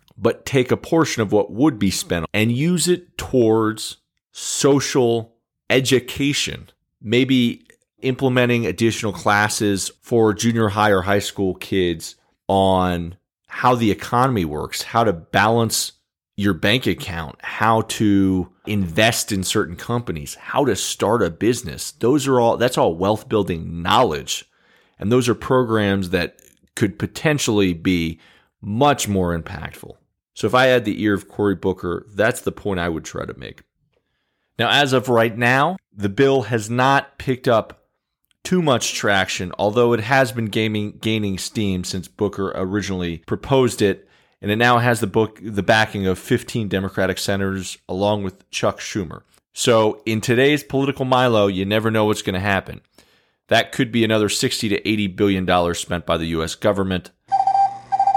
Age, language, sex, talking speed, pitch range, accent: 40-59, English, male, 155 wpm, 95-120 Hz, American